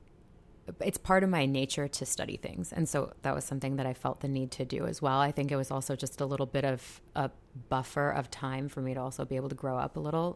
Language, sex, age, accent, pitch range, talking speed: English, female, 30-49, American, 135-150 Hz, 270 wpm